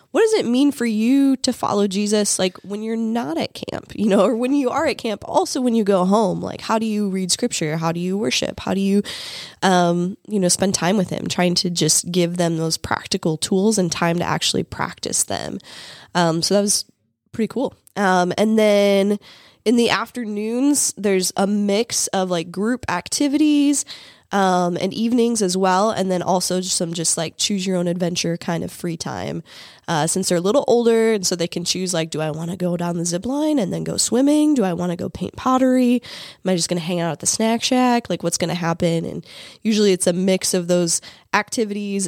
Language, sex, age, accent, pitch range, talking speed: English, female, 10-29, American, 175-215 Hz, 225 wpm